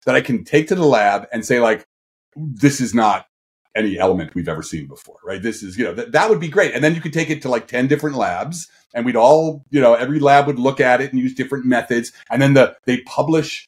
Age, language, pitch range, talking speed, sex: 40-59, English, 120-155 Hz, 265 wpm, male